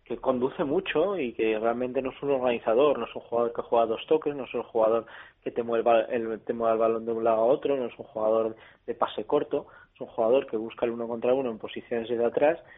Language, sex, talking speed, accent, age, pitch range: Spanish, male, 245 wpm, Spanish, 20-39, 120-145 Hz